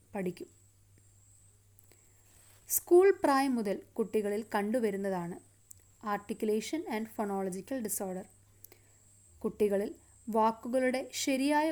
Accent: native